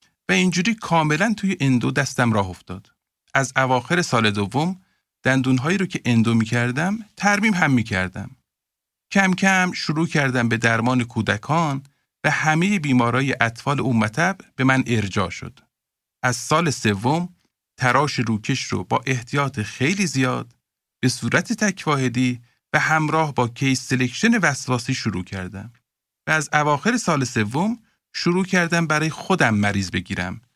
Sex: male